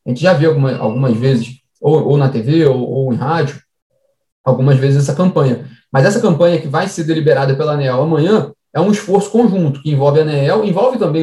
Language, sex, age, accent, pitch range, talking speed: Portuguese, male, 20-39, Brazilian, 150-205 Hz, 205 wpm